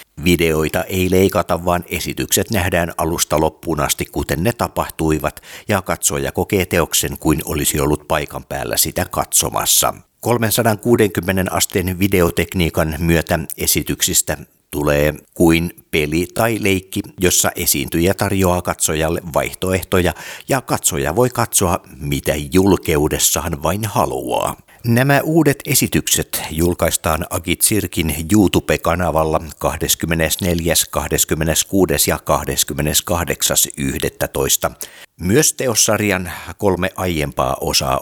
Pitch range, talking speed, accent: 80-95 Hz, 100 wpm, native